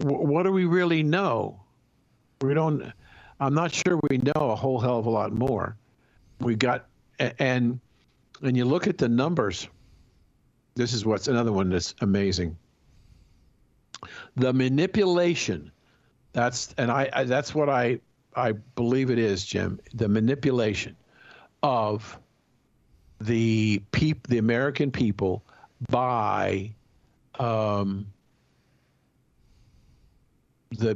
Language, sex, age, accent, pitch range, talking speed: English, male, 60-79, American, 105-130 Hz, 115 wpm